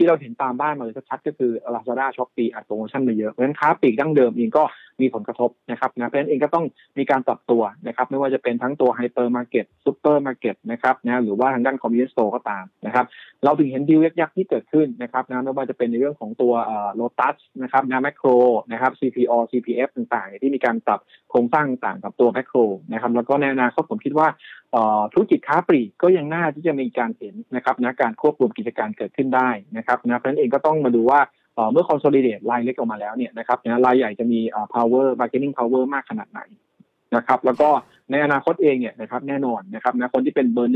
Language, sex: Thai, male